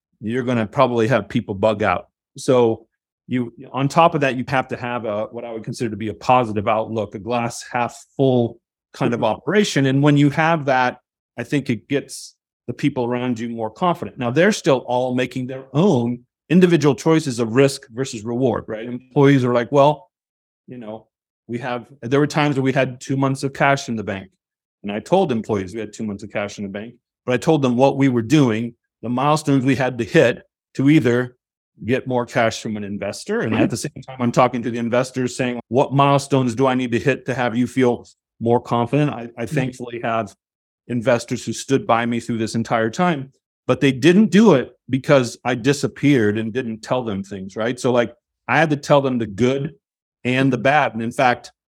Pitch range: 115-135 Hz